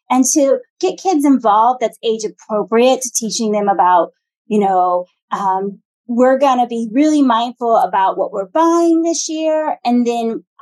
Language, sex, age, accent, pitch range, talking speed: English, female, 30-49, American, 205-285 Hz, 165 wpm